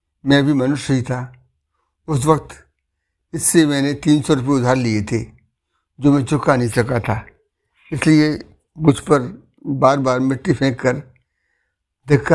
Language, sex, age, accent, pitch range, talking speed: Hindi, male, 60-79, native, 120-150 Hz, 145 wpm